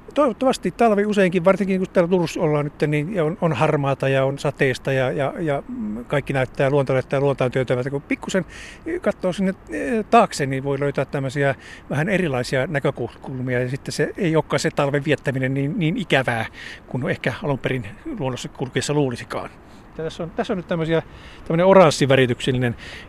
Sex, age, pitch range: male, 50-69, 130-165 Hz